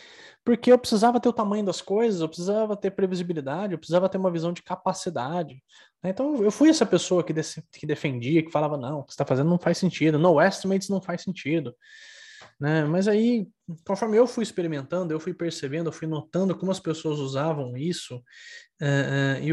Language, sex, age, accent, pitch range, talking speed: Portuguese, male, 20-39, Brazilian, 140-195 Hz, 185 wpm